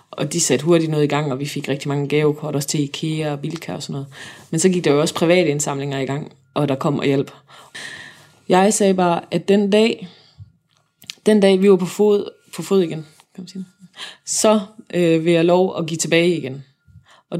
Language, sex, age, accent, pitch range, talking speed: Danish, female, 20-39, native, 150-185 Hz, 210 wpm